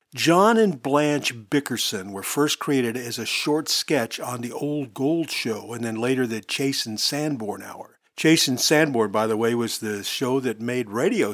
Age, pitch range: 50-69, 120-150 Hz